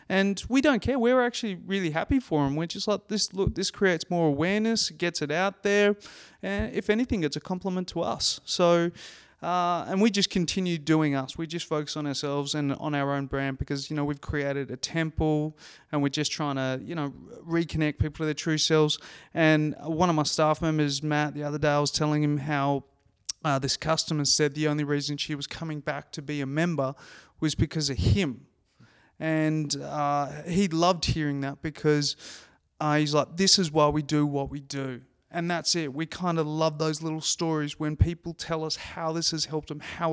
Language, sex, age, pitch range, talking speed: English, male, 20-39, 145-170 Hz, 210 wpm